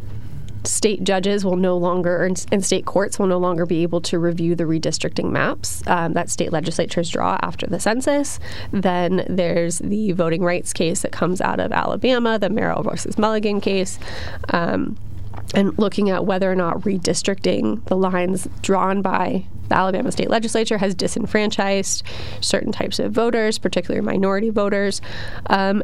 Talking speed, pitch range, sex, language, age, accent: 160 wpm, 175-210 Hz, female, English, 20-39, American